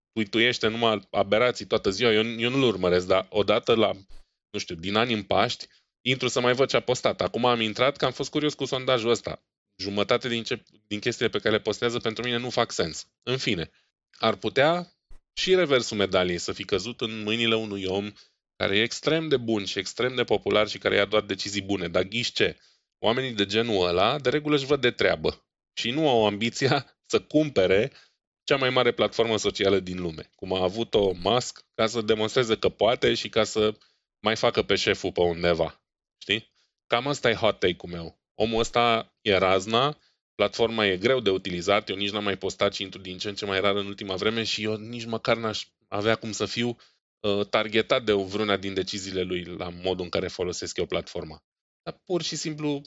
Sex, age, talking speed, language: male, 20-39, 205 wpm, Romanian